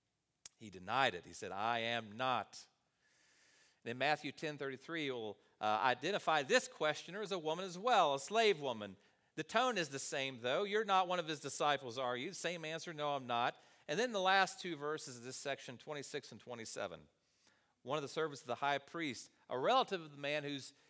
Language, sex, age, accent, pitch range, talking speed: English, male, 40-59, American, 135-190 Hz, 200 wpm